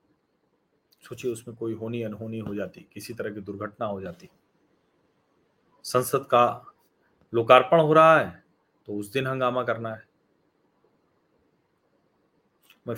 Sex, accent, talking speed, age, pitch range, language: male, native, 115 wpm, 40-59, 120-150 Hz, Hindi